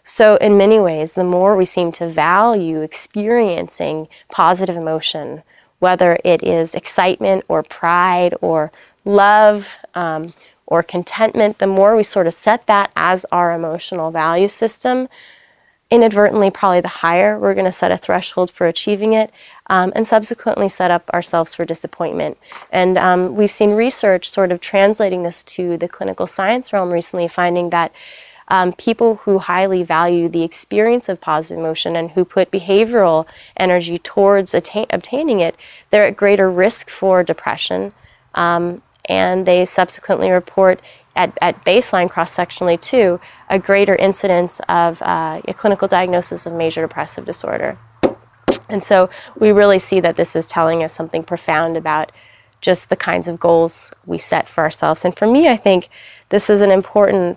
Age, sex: 20-39, female